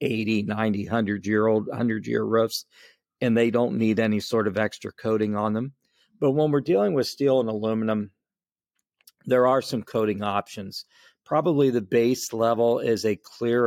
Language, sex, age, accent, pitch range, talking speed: English, male, 40-59, American, 105-120 Hz, 155 wpm